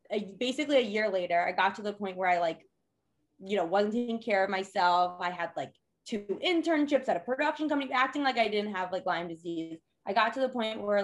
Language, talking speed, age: English, 230 wpm, 20-39